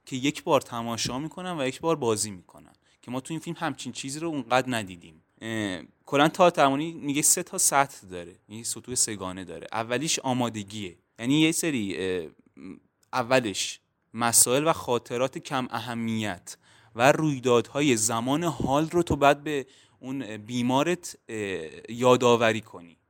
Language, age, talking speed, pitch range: Persian, 20-39, 145 wpm, 120-165 Hz